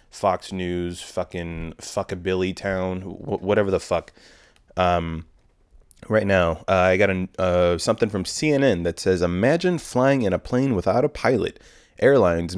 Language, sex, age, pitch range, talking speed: English, male, 30-49, 90-115 Hz, 155 wpm